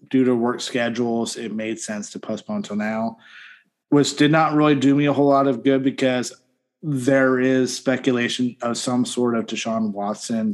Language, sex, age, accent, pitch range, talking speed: English, male, 30-49, American, 115-145 Hz, 180 wpm